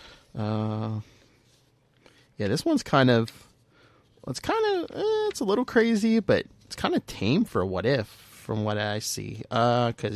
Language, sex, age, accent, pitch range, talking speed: English, male, 30-49, American, 110-135 Hz, 165 wpm